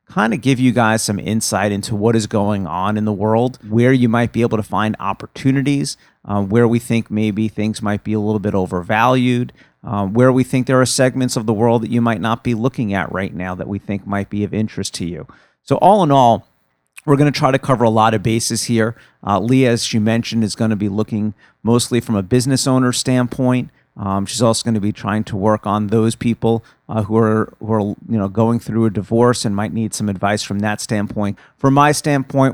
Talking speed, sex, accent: 235 wpm, male, American